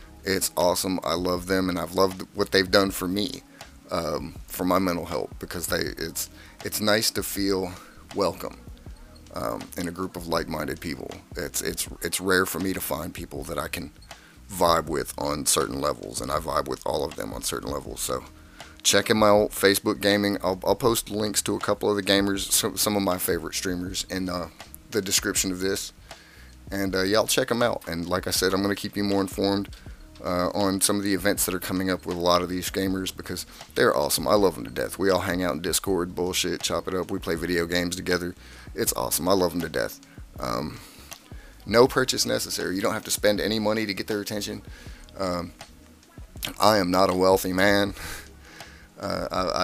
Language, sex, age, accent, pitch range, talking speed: English, male, 30-49, American, 90-100 Hz, 210 wpm